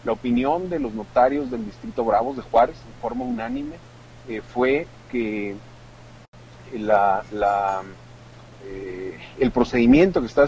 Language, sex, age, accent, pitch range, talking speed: Spanish, male, 40-59, Mexican, 110-140 Hz, 120 wpm